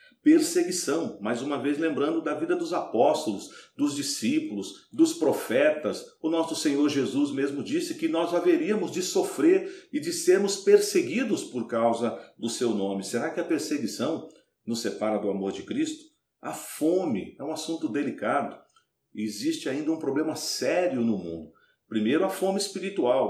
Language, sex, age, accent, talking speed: Portuguese, male, 50-69, Brazilian, 155 wpm